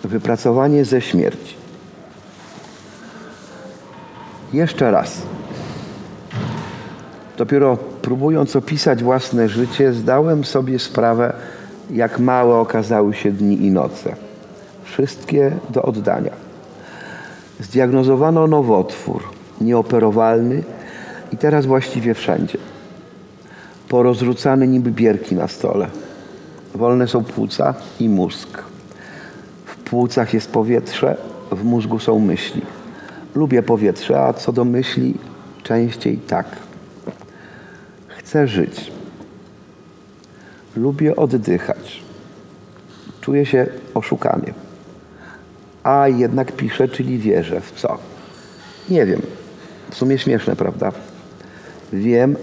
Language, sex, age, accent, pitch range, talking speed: Polish, male, 40-59, native, 115-135 Hz, 90 wpm